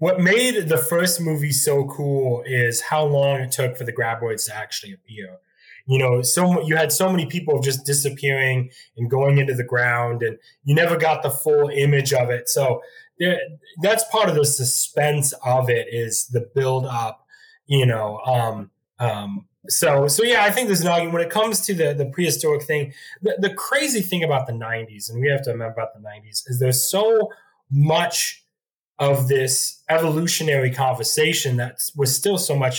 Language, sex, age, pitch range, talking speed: English, male, 20-39, 125-160 Hz, 185 wpm